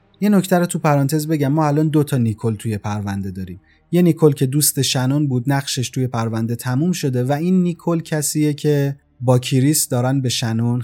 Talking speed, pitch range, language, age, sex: 190 wpm, 110-150 Hz, Persian, 30-49, male